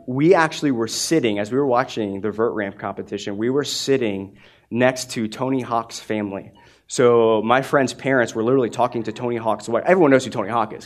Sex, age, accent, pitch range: male, 20-39, American, 110-150 Hz